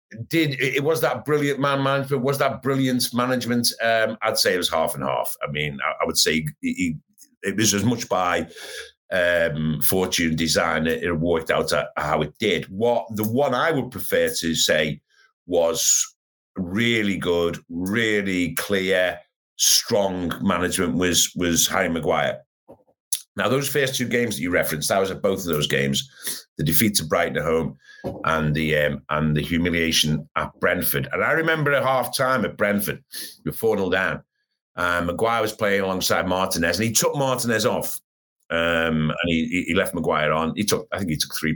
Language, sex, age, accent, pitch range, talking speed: English, male, 50-69, British, 85-135 Hz, 185 wpm